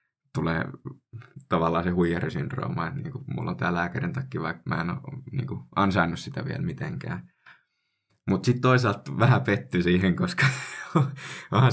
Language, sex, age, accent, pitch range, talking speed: Finnish, male, 20-39, native, 90-130 Hz, 145 wpm